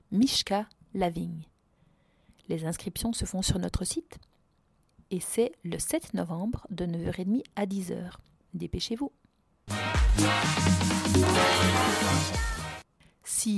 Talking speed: 90 wpm